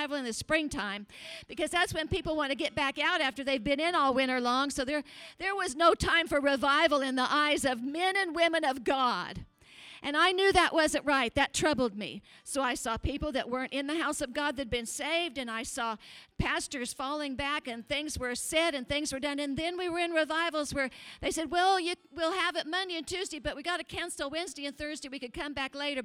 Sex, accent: female, American